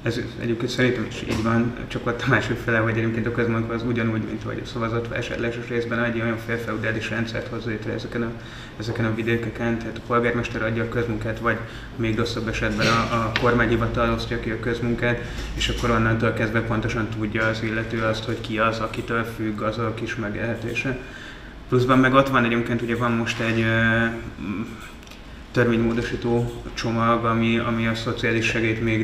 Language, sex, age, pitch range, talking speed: Hungarian, male, 20-39, 110-120 Hz, 175 wpm